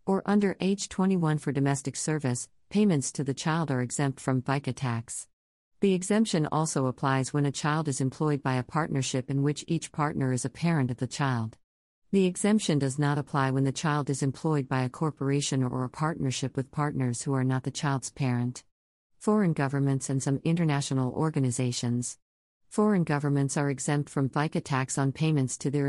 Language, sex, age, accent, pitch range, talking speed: English, female, 50-69, American, 130-155 Hz, 185 wpm